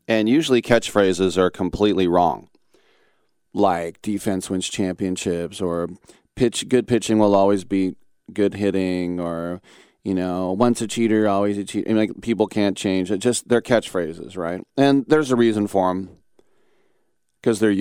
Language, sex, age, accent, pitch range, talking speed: English, male, 40-59, American, 95-115 Hz, 160 wpm